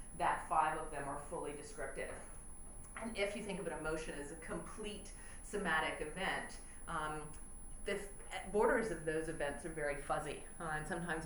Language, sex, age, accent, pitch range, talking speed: English, female, 40-59, American, 155-200 Hz, 165 wpm